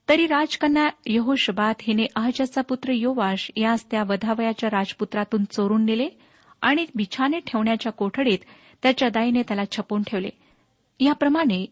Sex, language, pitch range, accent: female, Marathi, 205-255 Hz, native